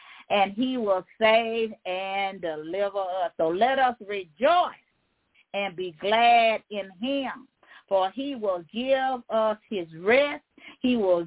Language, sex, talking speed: English, female, 135 wpm